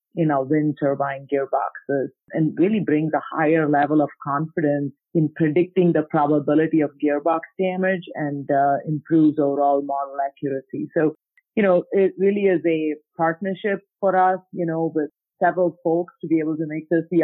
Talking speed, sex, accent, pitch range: 170 wpm, female, Indian, 150-175 Hz